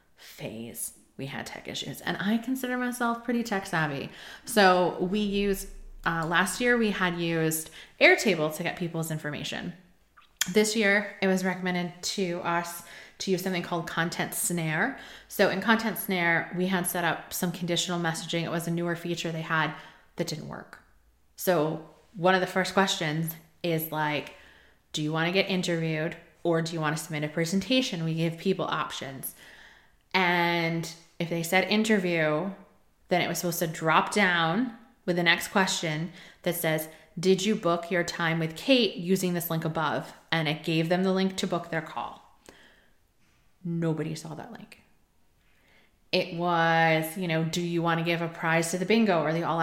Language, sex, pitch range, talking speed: English, female, 160-190 Hz, 175 wpm